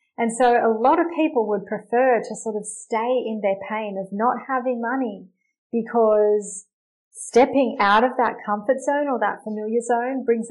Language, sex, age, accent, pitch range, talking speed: English, female, 30-49, Australian, 205-245 Hz, 175 wpm